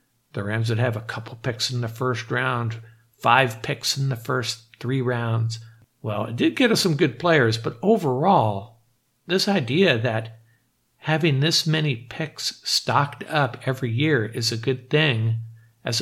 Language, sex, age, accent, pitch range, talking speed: English, male, 50-69, American, 115-135 Hz, 165 wpm